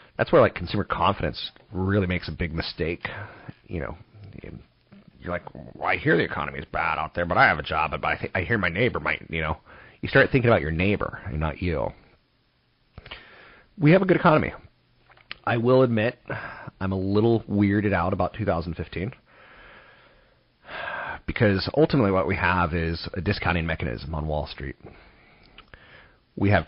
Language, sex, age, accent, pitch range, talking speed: English, male, 30-49, American, 85-110 Hz, 165 wpm